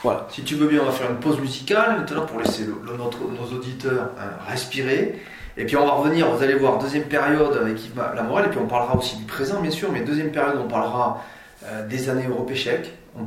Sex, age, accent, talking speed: male, 30-49, French, 245 wpm